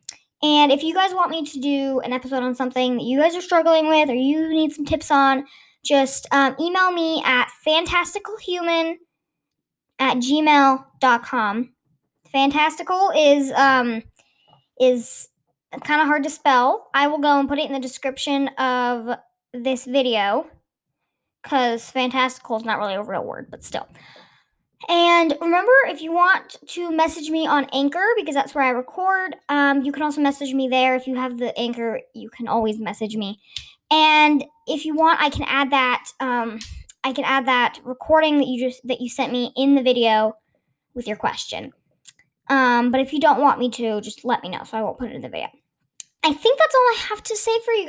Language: English